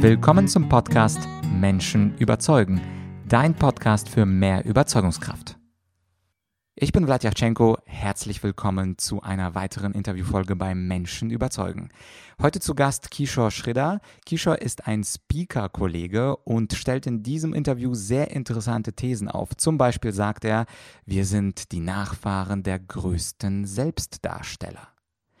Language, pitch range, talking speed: German, 100-130 Hz, 125 wpm